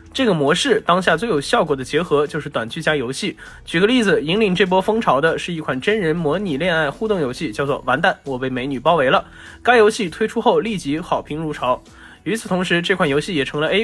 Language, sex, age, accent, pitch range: Chinese, male, 20-39, native, 145-210 Hz